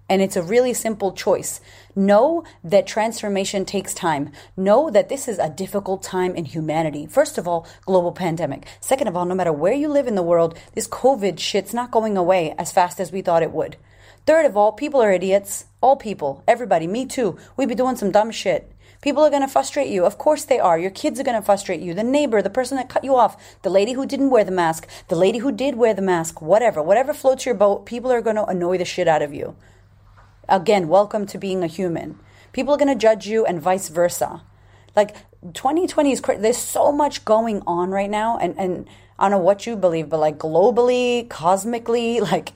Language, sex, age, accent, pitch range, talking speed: English, female, 30-49, American, 165-240 Hz, 220 wpm